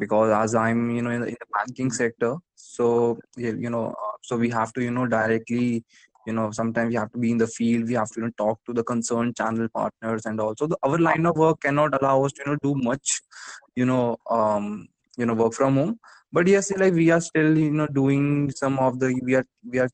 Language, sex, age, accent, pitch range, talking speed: English, male, 20-39, Indian, 115-135 Hz, 235 wpm